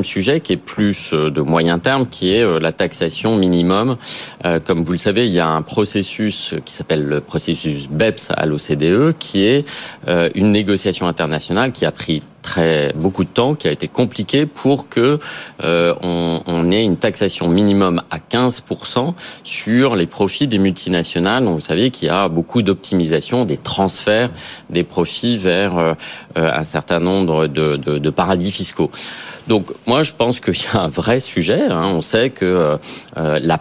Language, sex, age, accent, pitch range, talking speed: French, male, 30-49, French, 80-105 Hz, 160 wpm